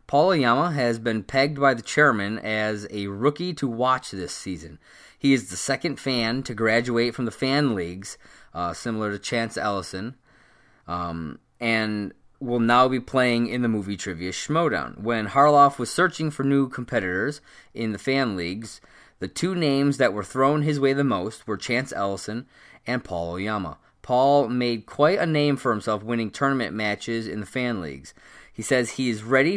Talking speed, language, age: 180 wpm, English, 20-39